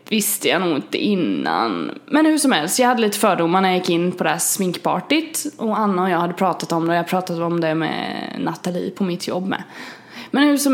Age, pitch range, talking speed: 20-39, 185-240 Hz, 240 wpm